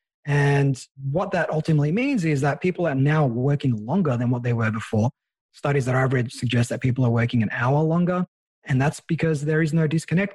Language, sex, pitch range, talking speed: English, male, 125-155 Hz, 210 wpm